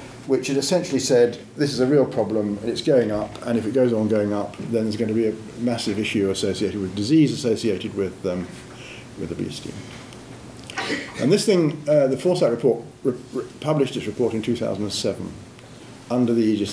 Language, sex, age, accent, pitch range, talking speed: English, male, 50-69, British, 105-140 Hz, 185 wpm